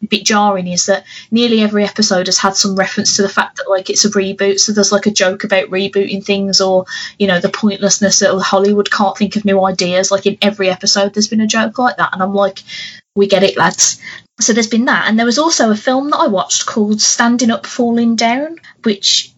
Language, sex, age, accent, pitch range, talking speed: English, female, 20-39, British, 190-225 Hz, 235 wpm